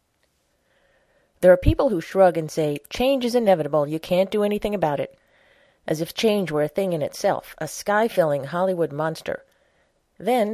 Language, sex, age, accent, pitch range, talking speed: English, female, 40-59, American, 155-200 Hz, 165 wpm